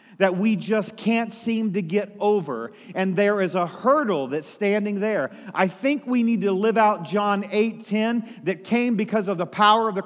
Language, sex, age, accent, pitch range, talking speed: English, male, 40-59, American, 205-250 Hz, 195 wpm